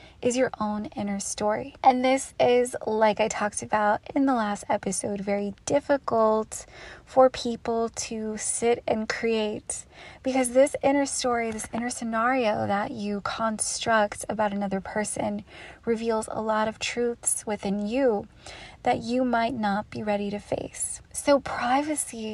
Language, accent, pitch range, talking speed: English, American, 215-245 Hz, 145 wpm